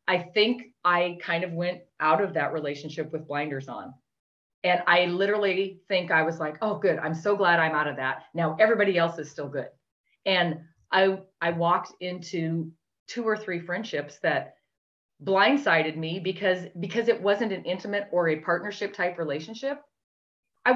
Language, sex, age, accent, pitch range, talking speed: English, female, 30-49, American, 160-200 Hz, 170 wpm